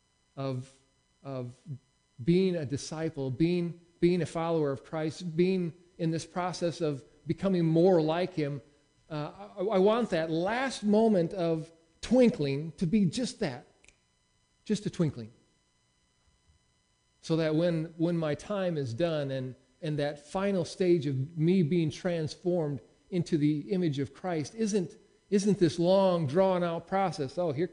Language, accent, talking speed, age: English, American, 145 wpm, 40-59